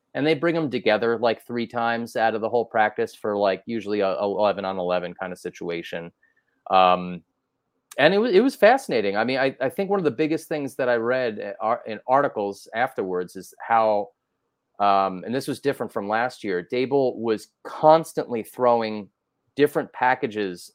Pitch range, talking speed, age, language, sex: 100-130 Hz, 185 wpm, 30-49, English, male